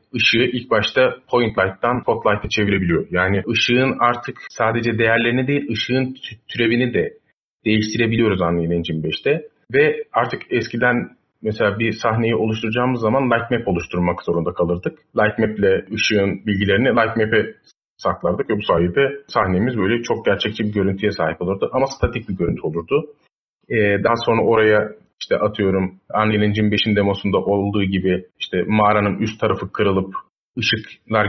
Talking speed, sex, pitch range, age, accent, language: 140 wpm, male, 100-120 Hz, 30-49, native, Turkish